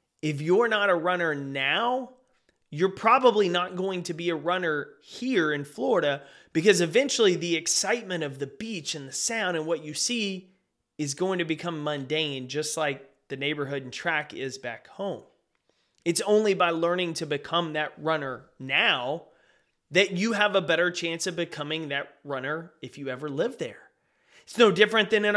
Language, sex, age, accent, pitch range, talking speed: English, male, 30-49, American, 150-200 Hz, 175 wpm